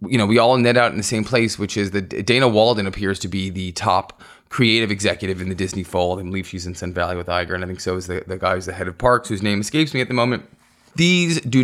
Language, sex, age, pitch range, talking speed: English, male, 20-39, 95-120 Hz, 290 wpm